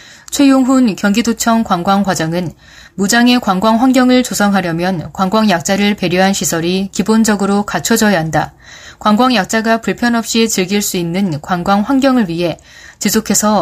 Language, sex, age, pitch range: Korean, female, 20-39, 180-230 Hz